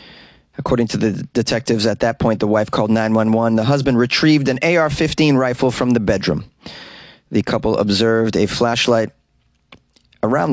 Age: 30-49